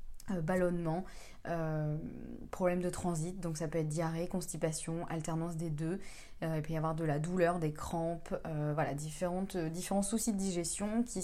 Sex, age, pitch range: female, 20-39, 165-205 Hz